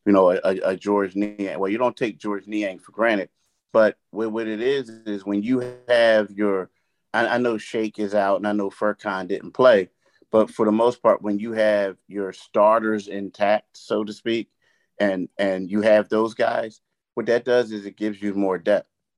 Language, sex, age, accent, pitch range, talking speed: English, male, 30-49, American, 105-125 Hz, 205 wpm